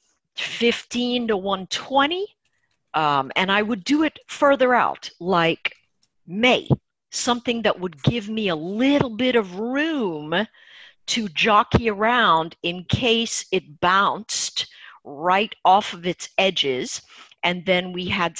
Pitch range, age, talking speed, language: 185-275 Hz, 50-69, 125 wpm, English